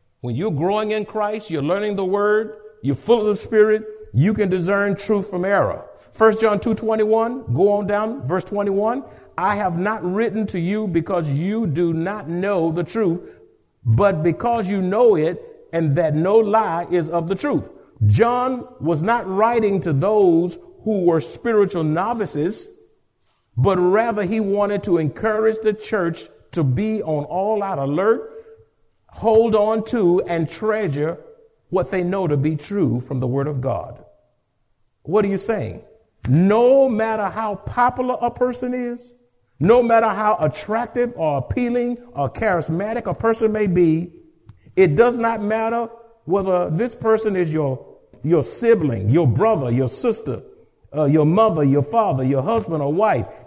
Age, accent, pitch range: 60-79, American, 160-225 Hz